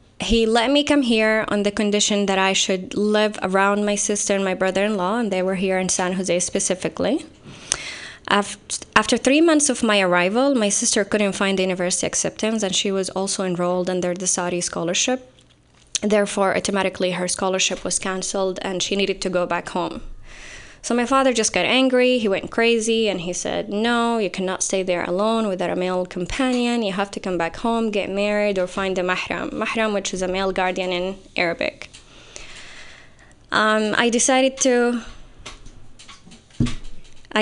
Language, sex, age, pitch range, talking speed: English, female, 20-39, 185-225 Hz, 170 wpm